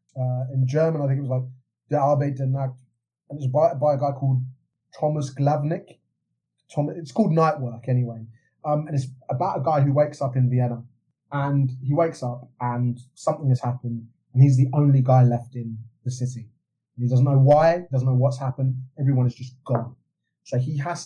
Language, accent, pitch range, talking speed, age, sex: English, British, 125-160 Hz, 195 wpm, 20-39, male